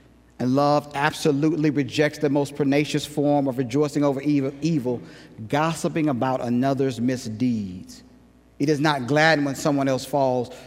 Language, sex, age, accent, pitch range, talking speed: English, male, 40-59, American, 125-150 Hz, 135 wpm